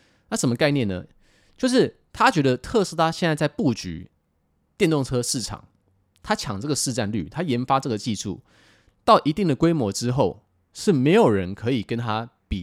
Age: 20-39